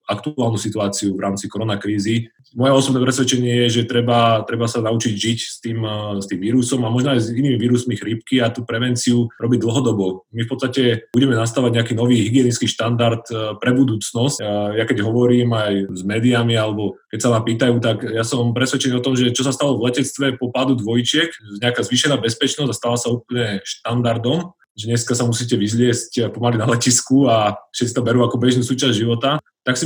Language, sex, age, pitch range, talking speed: Slovak, male, 20-39, 110-130 Hz, 195 wpm